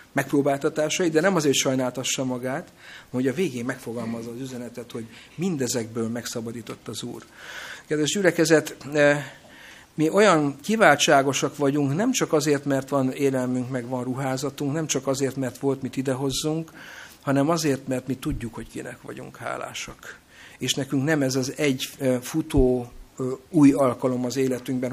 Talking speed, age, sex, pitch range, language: 145 wpm, 50-69, male, 130-150 Hz, Hungarian